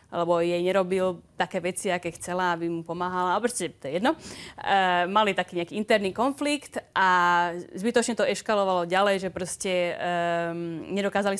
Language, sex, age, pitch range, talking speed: Czech, female, 30-49, 175-200 Hz, 160 wpm